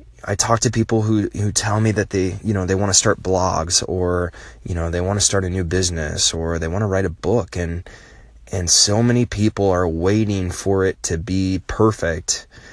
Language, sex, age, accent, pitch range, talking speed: English, male, 20-39, American, 90-105 Hz, 215 wpm